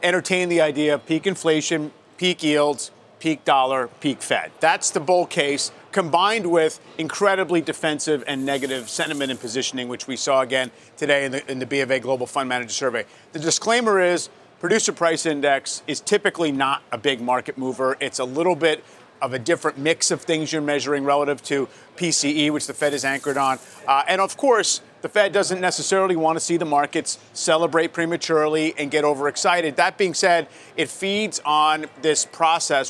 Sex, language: male, English